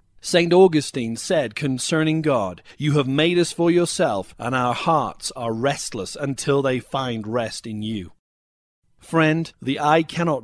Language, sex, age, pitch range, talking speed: English, male, 40-59, 125-165 Hz, 150 wpm